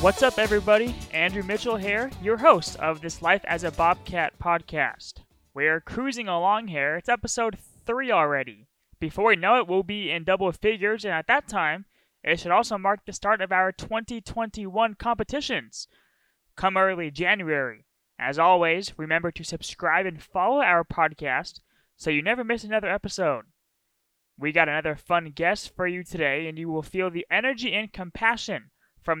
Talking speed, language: 165 wpm, English